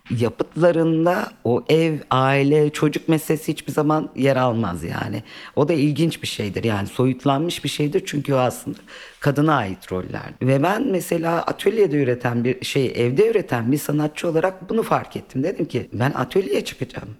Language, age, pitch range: Turkish, 40-59, 120-155 Hz